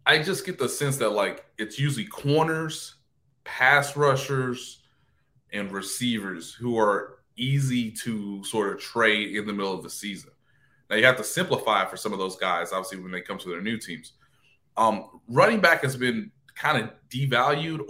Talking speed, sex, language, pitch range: 180 wpm, male, English, 105-140 Hz